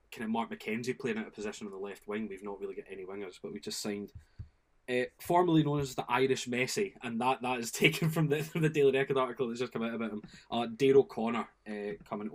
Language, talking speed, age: English, 255 wpm, 20-39